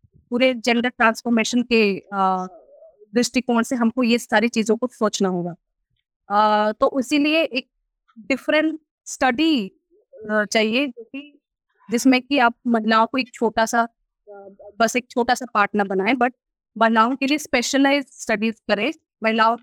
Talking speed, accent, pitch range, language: 125 wpm, native, 215-255 Hz, Hindi